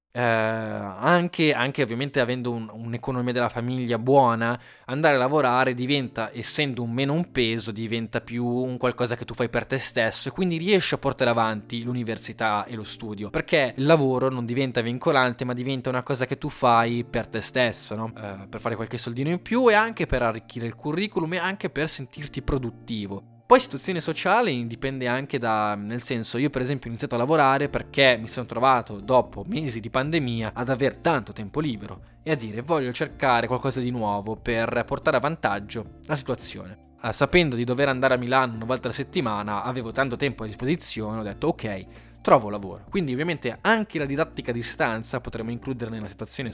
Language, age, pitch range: Italian, 20-39, 115-145 Hz